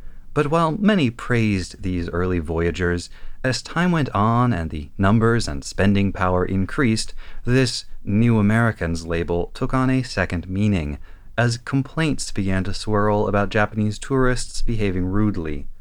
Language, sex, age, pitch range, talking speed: English, male, 30-49, 90-120 Hz, 140 wpm